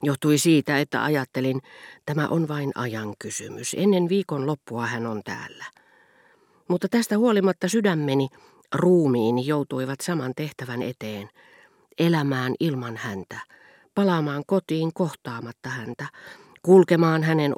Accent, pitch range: native, 120-170 Hz